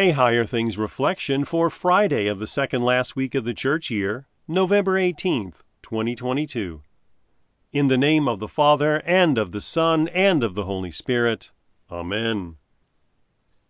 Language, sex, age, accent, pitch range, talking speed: English, male, 40-59, American, 100-140 Hz, 150 wpm